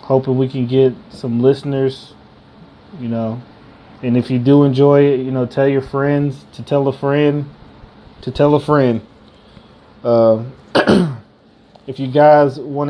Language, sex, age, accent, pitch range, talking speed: English, male, 20-39, American, 130-145 Hz, 150 wpm